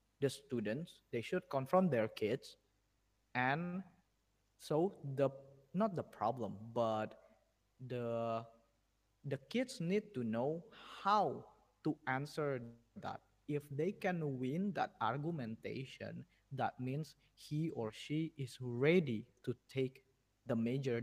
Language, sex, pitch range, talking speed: Indonesian, male, 115-155 Hz, 115 wpm